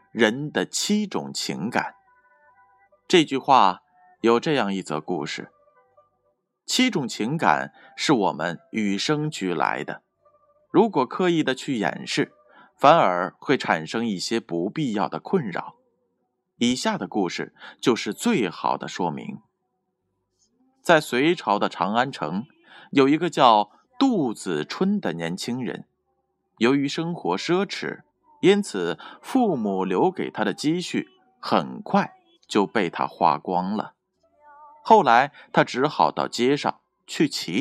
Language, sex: Chinese, male